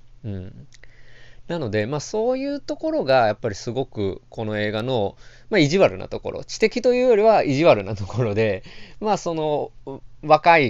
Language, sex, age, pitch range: Japanese, male, 20-39, 110-175 Hz